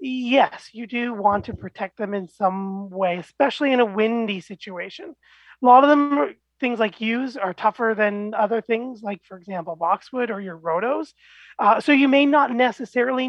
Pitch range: 195-250 Hz